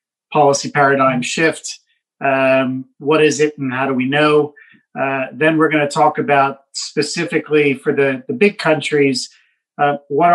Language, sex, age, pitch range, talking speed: English, male, 40-59, 135-150 Hz, 155 wpm